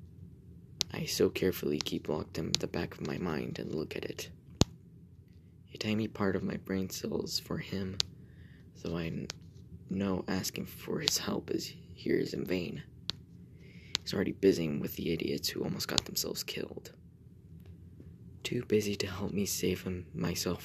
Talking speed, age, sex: 165 wpm, 20-39, male